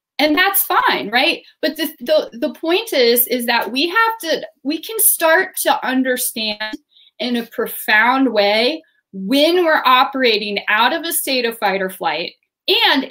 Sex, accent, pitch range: female, American, 235-335 Hz